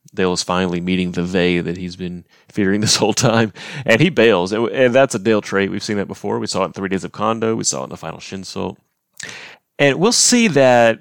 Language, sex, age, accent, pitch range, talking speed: English, male, 30-49, American, 95-110 Hz, 240 wpm